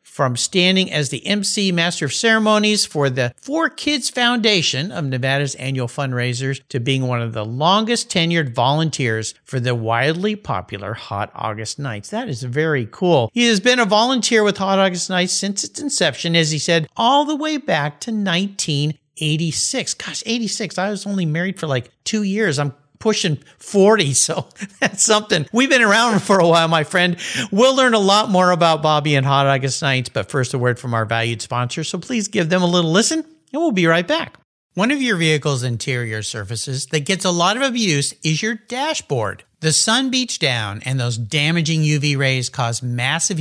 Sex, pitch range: male, 135-210 Hz